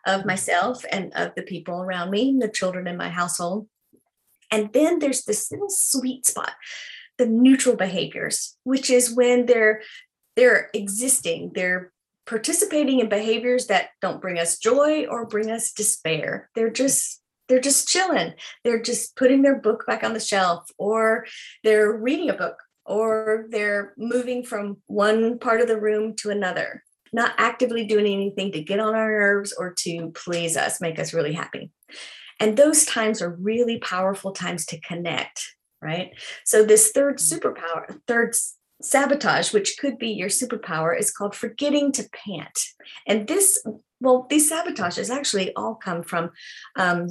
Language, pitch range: English, 185-250 Hz